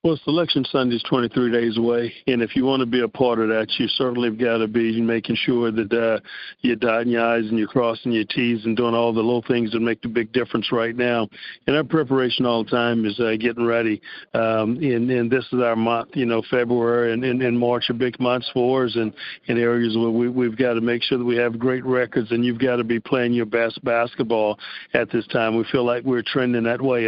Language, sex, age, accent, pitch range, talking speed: English, male, 50-69, American, 115-130 Hz, 250 wpm